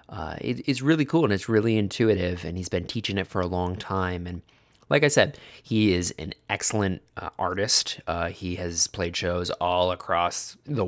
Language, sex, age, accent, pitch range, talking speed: English, male, 20-39, American, 90-110 Hz, 195 wpm